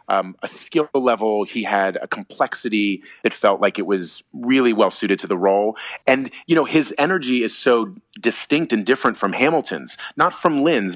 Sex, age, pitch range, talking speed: male, 30-49, 100-125 Hz, 185 wpm